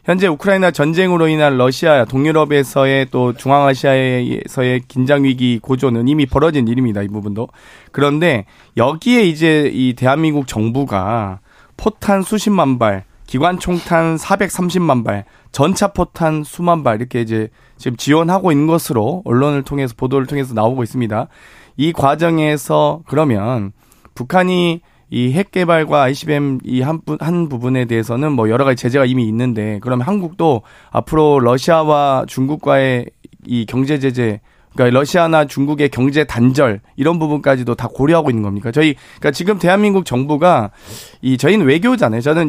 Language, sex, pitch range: Korean, male, 125-160 Hz